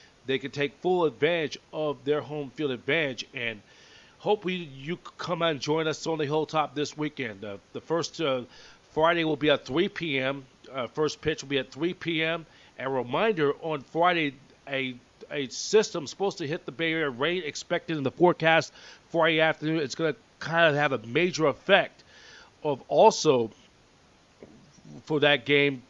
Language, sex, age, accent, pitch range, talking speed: English, male, 40-59, American, 135-165 Hz, 170 wpm